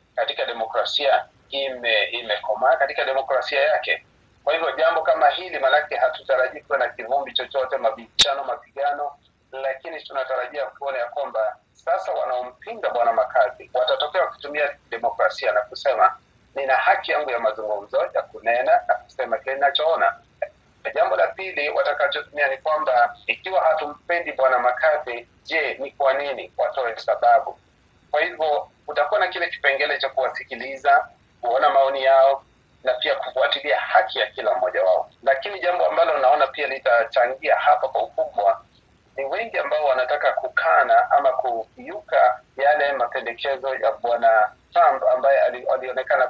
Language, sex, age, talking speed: Swahili, male, 40-59, 130 wpm